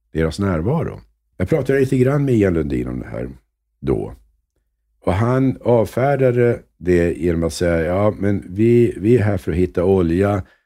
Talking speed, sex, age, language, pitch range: 170 wpm, male, 60-79, English, 75-105 Hz